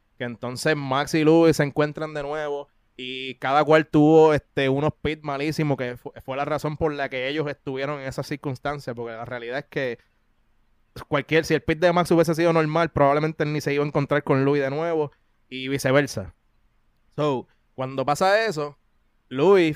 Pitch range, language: 135-165 Hz, Spanish